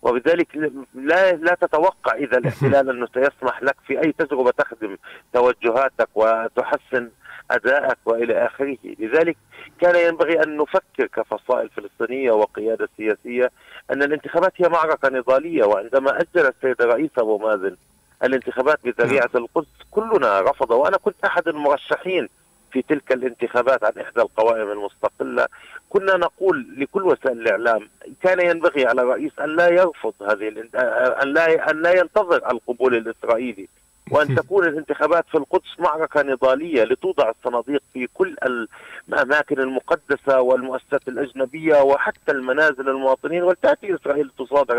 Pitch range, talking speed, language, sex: 130-170 Hz, 130 wpm, Arabic, male